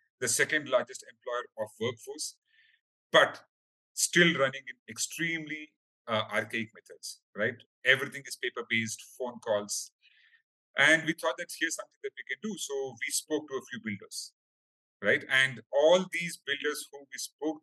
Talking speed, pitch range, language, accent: 155 wpm, 115-170 Hz, English, Indian